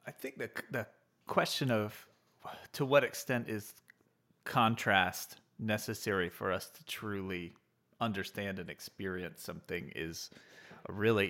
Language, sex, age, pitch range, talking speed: English, male, 30-49, 100-130 Hz, 120 wpm